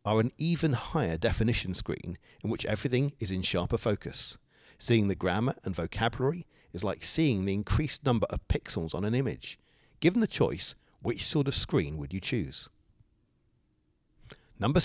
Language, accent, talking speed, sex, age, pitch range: English, British, 160 wpm, male, 50-69, 100-140 Hz